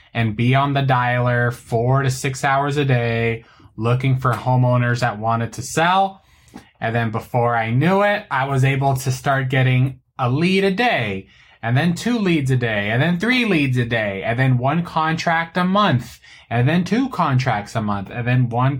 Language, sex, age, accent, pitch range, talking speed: English, male, 20-39, American, 115-140 Hz, 195 wpm